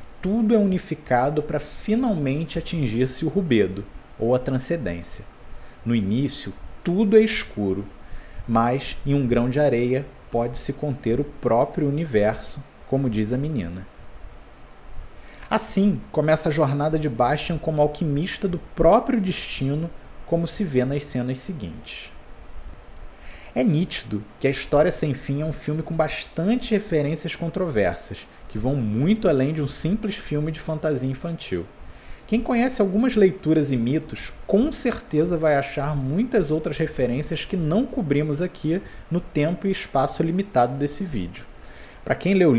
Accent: Brazilian